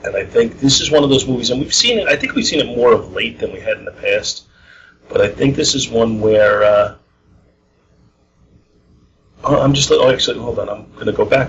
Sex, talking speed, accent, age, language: male, 235 wpm, American, 40-59, English